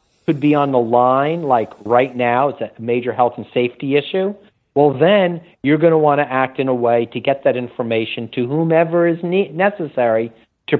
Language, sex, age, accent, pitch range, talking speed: English, male, 50-69, American, 125-165 Hz, 195 wpm